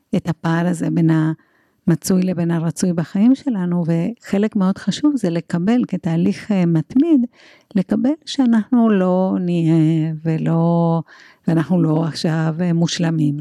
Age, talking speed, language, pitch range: 60-79, 110 wpm, Hebrew, 165-220 Hz